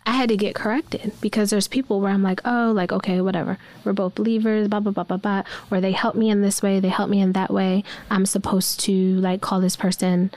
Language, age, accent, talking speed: English, 20-39, American, 250 wpm